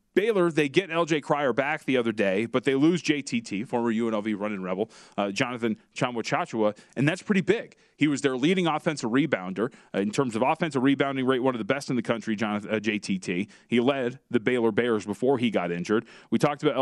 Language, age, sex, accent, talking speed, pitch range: English, 30-49, male, American, 205 wpm, 115-150 Hz